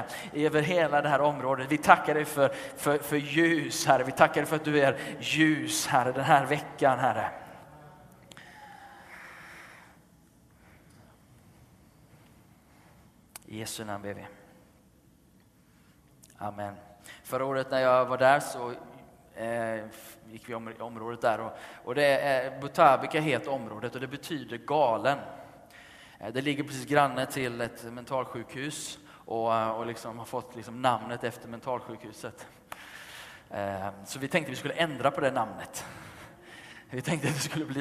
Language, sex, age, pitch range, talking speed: Swedish, male, 20-39, 120-145 Hz, 140 wpm